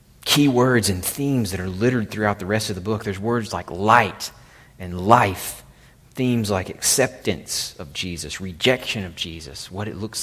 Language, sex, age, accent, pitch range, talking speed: English, male, 30-49, American, 100-125 Hz, 175 wpm